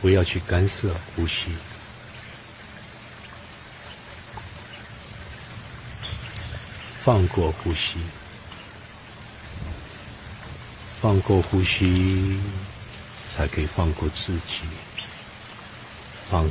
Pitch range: 95-115 Hz